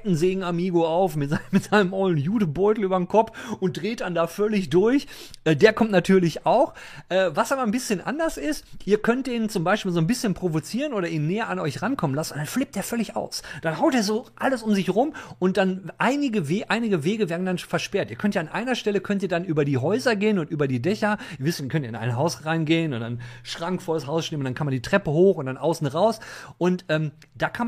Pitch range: 145-210 Hz